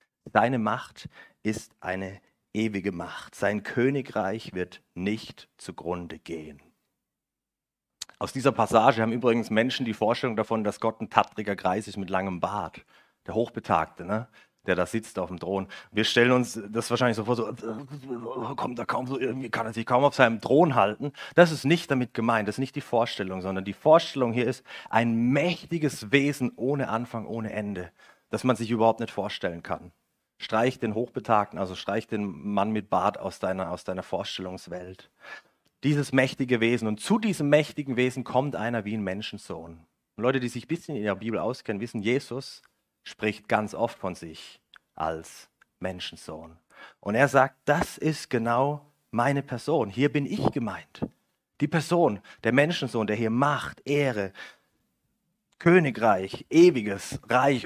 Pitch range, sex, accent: 100-130 Hz, male, German